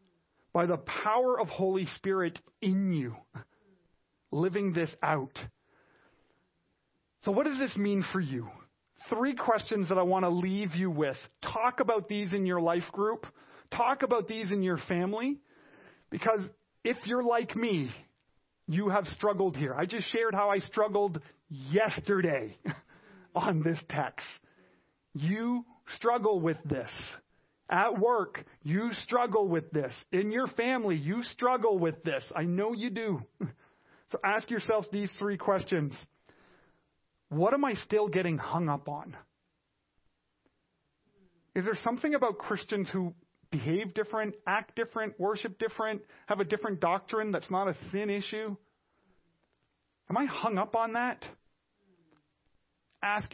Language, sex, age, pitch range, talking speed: English, male, 40-59, 175-220 Hz, 135 wpm